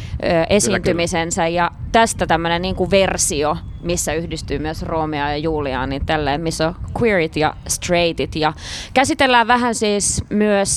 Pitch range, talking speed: 165-205 Hz, 135 wpm